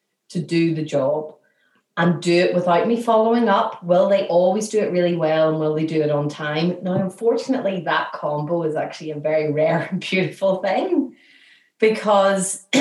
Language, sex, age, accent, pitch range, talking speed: English, female, 30-49, Irish, 160-210 Hz, 180 wpm